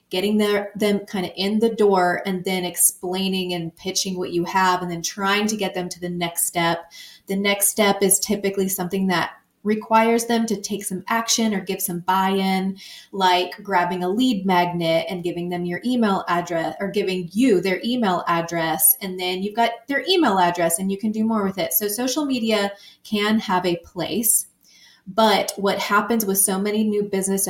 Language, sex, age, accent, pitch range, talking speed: English, female, 20-39, American, 180-210 Hz, 190 wpm